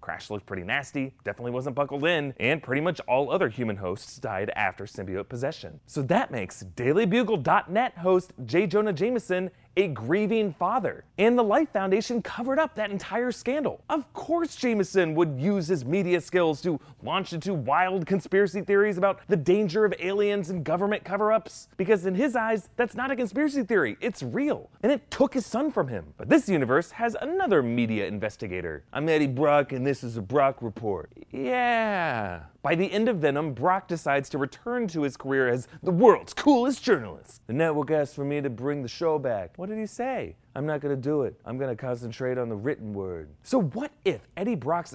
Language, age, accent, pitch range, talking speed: English, 30-49, American, 125-205 Hz, 195 wpm